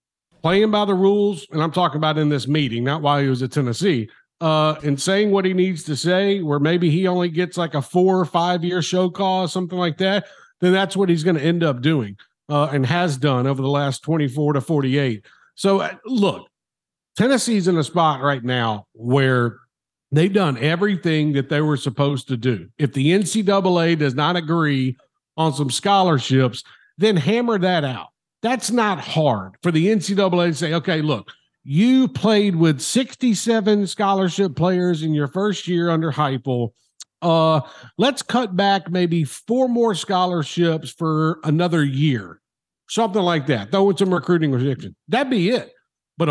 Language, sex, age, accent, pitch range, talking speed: English, male, 50-69, American, 145-195 Hz, 175 wpm